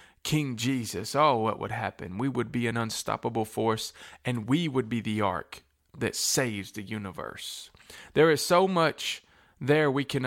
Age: 20-39